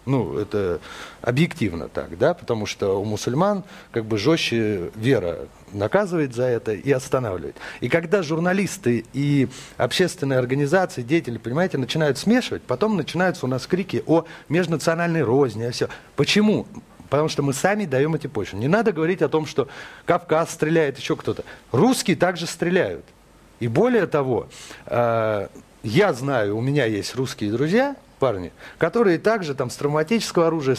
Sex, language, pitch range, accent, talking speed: male, Russian, 130-185 Hz, native, 150 wpm